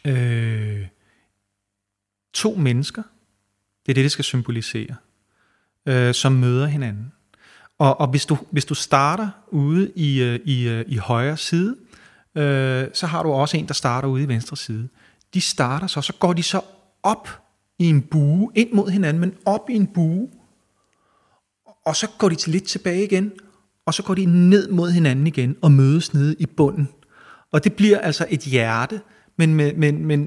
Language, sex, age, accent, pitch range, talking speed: Danish, male, 30-49, native, 130-180 Hz, 180 wpm